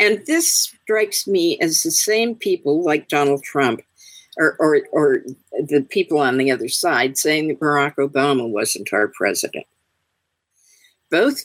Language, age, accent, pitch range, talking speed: English, 50-69, American, 130-165 Hz, 145 wpm